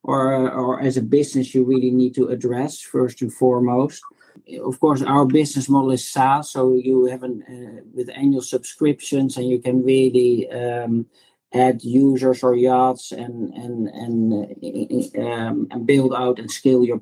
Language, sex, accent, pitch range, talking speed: English, male, Dutch, 125-140 Hz, 170 wpm